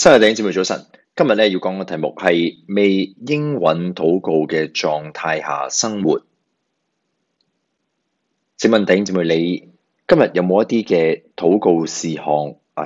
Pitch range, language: 75-95 Hz, Chinese